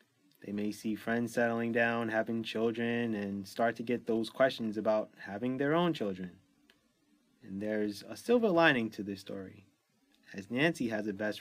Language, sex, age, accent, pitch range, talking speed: English, male, 20-39, American, 105-125 Hz, 170 wpm